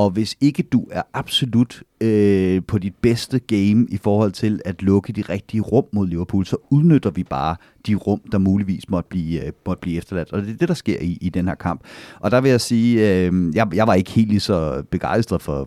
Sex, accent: male, native